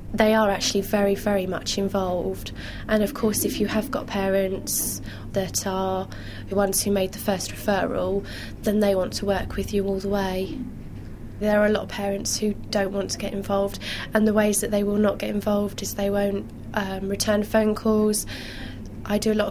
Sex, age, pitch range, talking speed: female, 20-39, 190-210 Hz, 205 wpm